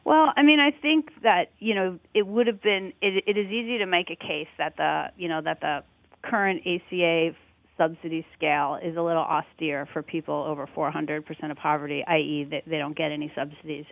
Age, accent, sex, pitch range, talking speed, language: 40-59, American, female, 160-180 Hz, 210 wpm, English